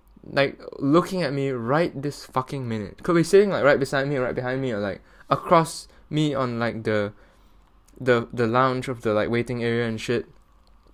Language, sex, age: English, male, 10-29